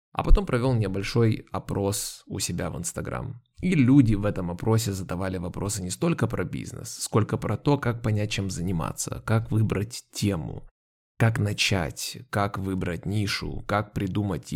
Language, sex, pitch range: Ukrainian, male, 95-125 Hz